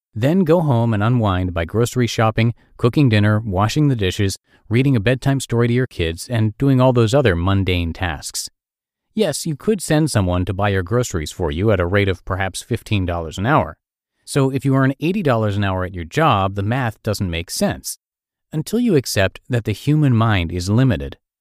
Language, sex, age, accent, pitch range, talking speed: English, male, 40-59, American, 95-135 Hz, 195 wpm